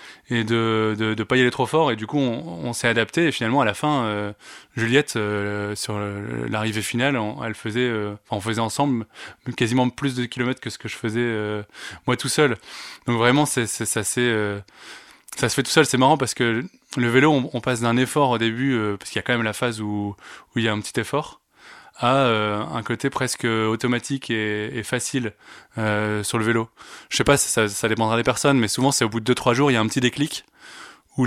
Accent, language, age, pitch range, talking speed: French, French, 20-39, 115-130 Hz, 235 wpm